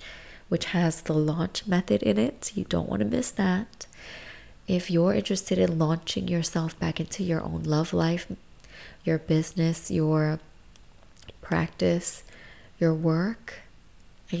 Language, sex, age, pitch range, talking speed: English, female, 20-39, 155-185 Hz, 130 wpm